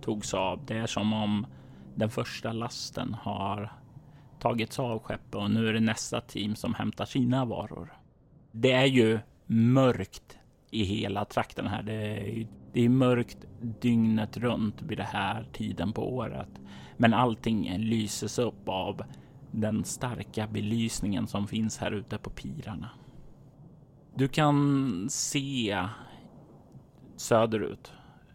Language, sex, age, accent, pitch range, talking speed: Swedish, male, 30-49, native, 105-125 Hz, 130 wpm